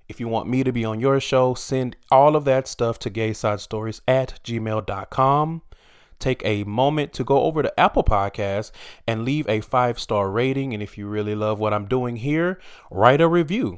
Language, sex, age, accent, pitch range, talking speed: English, male, 30-49, American, 105-145 Hz, 190 wpm